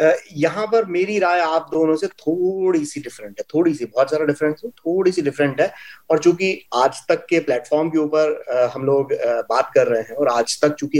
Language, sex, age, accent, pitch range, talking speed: Hindi, male, 30-49, native, 150-225 Hz, 225 wpm